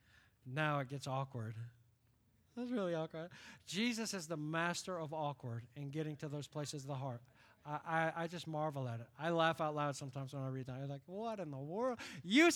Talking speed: 210 wpm